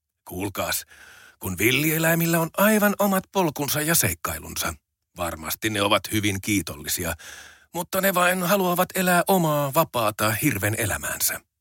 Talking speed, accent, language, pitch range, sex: 120 wpm, native, Finnish, 90-140 Hz, male